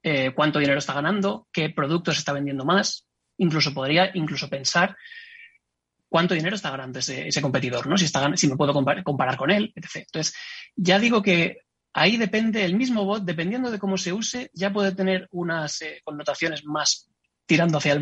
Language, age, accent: Spanish, 30-49, Spanish